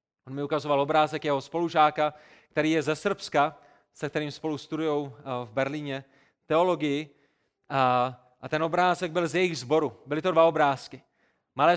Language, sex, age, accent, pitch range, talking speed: Czech, male, 30-49, native, 145-190 Hz, 155 wpm